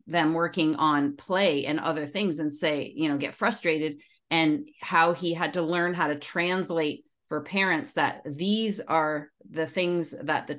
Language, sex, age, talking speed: English, female, 30-49, 175 wpm